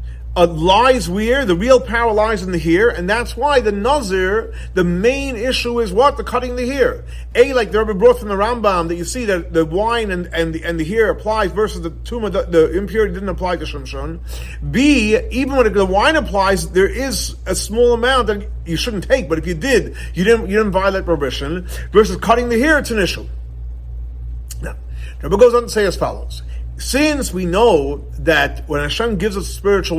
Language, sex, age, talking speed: English, male, 50-69, 210 wpm